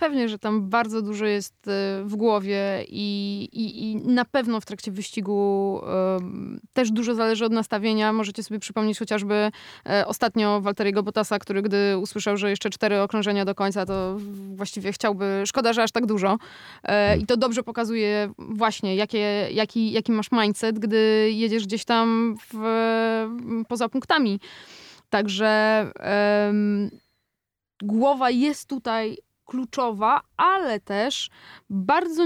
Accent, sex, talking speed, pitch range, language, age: native, female, 125 wpm, 205-240 Hz, Polish, 20-39